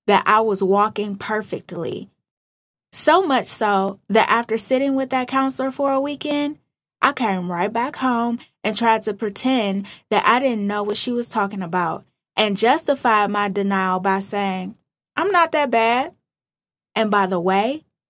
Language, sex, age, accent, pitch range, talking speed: English, female, 20-39, American, 200-255 Hz, 160 wpm